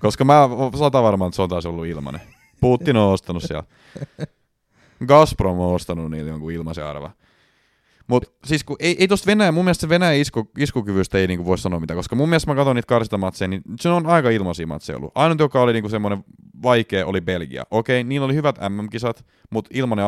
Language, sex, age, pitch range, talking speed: Finnish, male, 30-49, 90-135 Hz, 195 wpm